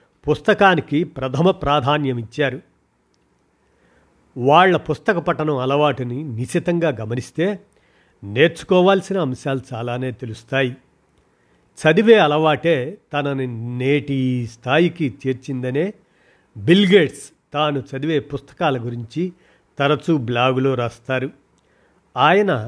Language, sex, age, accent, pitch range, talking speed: Telugu, male, 50-69, native, 125-165 Hz, 75 wpm